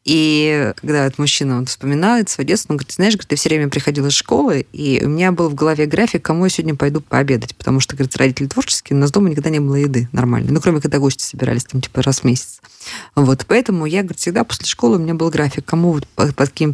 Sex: female